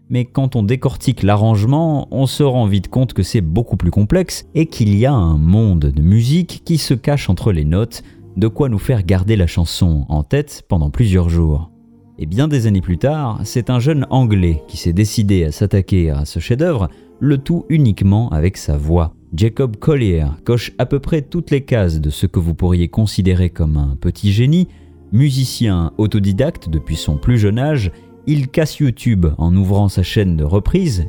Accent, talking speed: French, 195 wpm